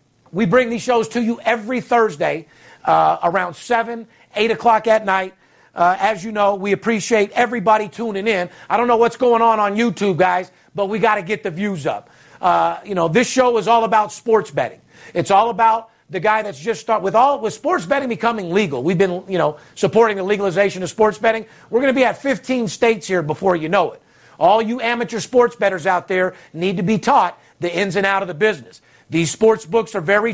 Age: 50-69